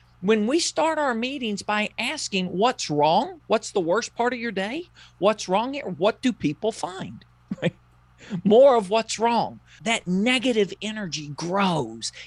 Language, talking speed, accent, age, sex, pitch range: English, 150 wpm, American, 40-59, male, 175-245 Hz